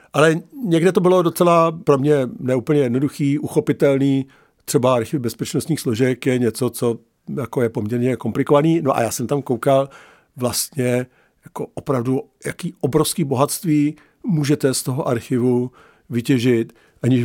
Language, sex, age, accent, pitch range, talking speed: Czech, male, 50-69, native, 125-160 Hz, 130 wpm